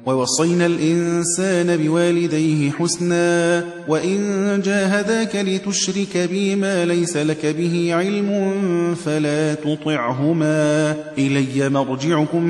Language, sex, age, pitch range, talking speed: Persian, male, 30-49, 150-190 Hz, 85 wpm